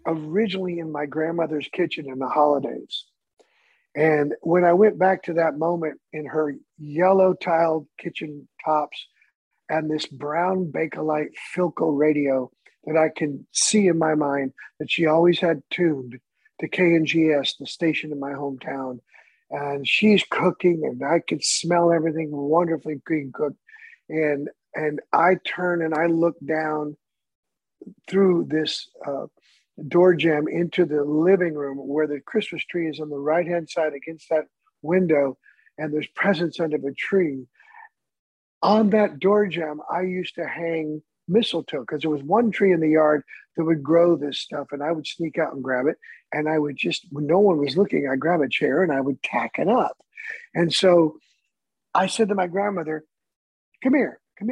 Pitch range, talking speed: 150-185 Hz, 170 wpm